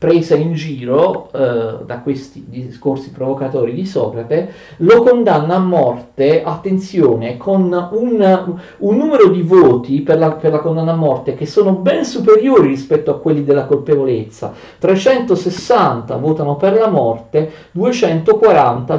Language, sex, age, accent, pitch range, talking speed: Italian, male, 40-59, native, 135-180 Hz, 135 wpm